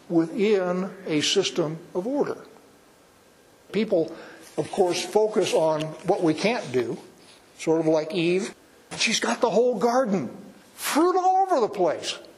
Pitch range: 155-200 Hz